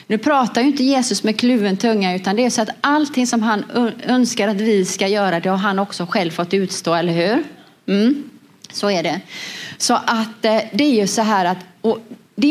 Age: 30-49